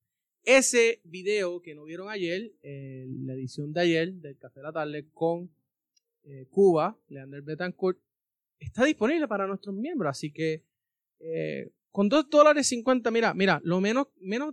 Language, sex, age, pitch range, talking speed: Spanish, male, 20-39, 140-190 Hz, 155 wpm